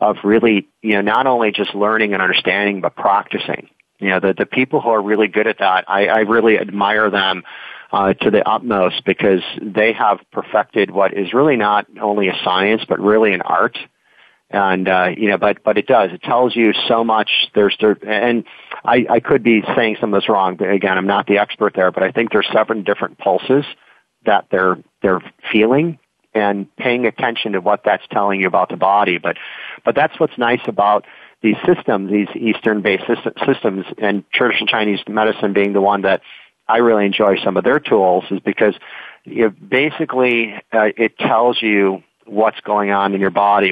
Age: 40-59